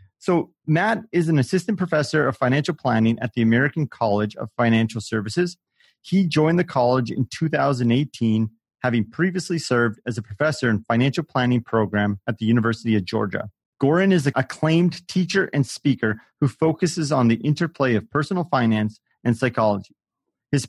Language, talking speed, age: English, 160 wpm, 30-49